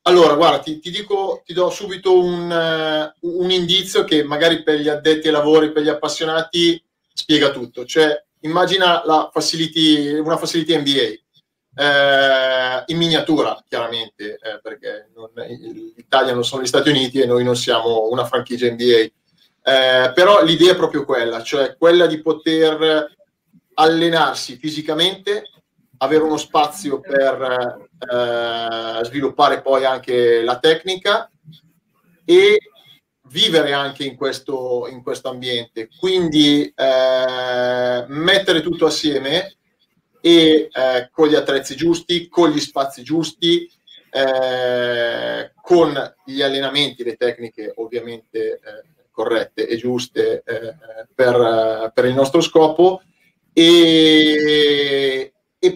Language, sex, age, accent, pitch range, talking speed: Italian, male, 30-49, native, 130-170 Hz, 125 wpm